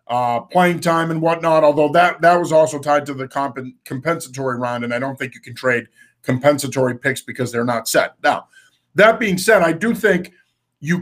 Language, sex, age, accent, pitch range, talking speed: English, male, 50-69, American, 145-185 Hz, 200 wpm